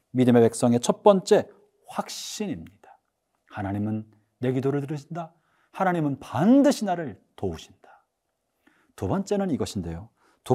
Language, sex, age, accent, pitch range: Korean, male, 40-59, native, 120-200 Hz